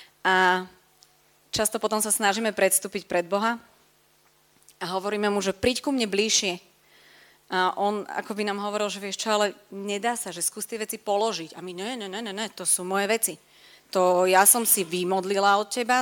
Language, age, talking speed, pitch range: Slovak, 30-49, 185 wpm, 185-215 Hz